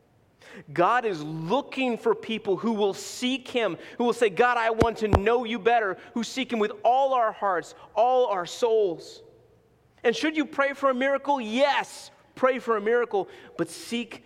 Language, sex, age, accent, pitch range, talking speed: English, male, 30-49, American, 165-235 Hz, 180 wpm